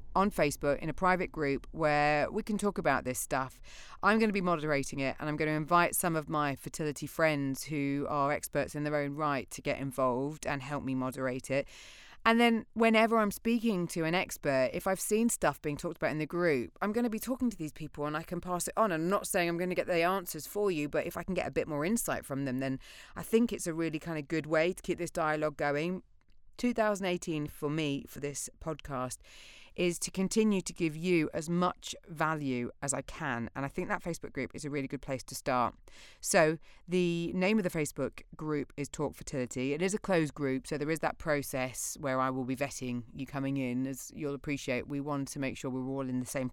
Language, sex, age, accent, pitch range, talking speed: English, female, 30-49, British, 135-175 Hz, 240 wpm